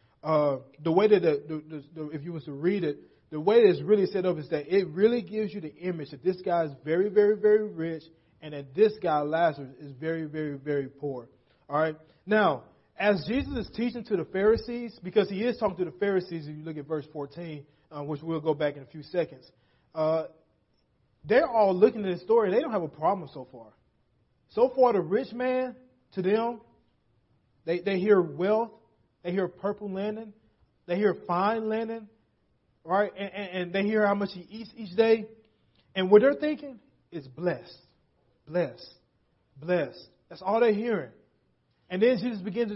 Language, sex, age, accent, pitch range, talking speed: English, male, 30-49, American, 155-215 Hz, 200 wpm